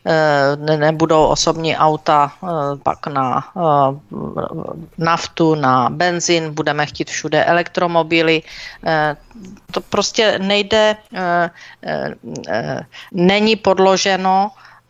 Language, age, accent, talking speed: Czech, 40-59, native, 70 wpm